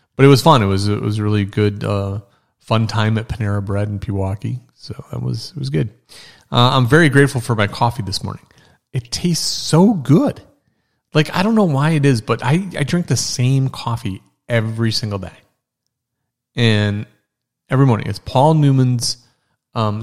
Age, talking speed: 30-49, 185 wpm